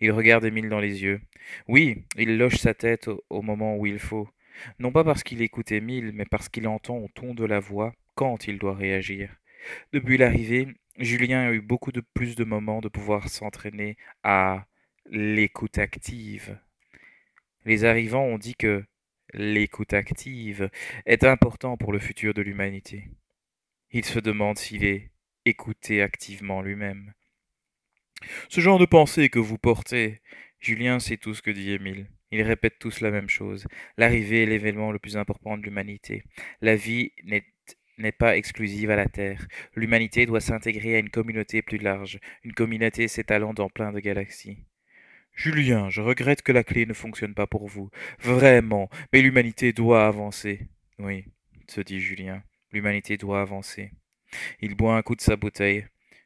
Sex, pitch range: male, 100-115 Hz